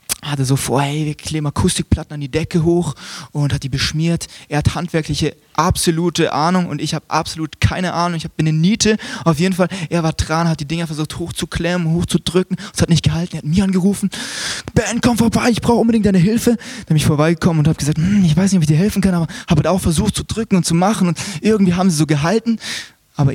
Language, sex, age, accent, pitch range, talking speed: German, male, 20-39, German, 155-200 Hz, 225 wpm